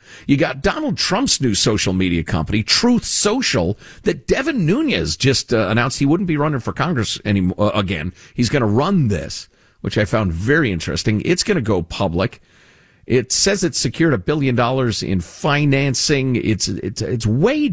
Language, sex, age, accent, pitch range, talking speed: English, male, 50-69, American, 95-145 Hz, 180 wpm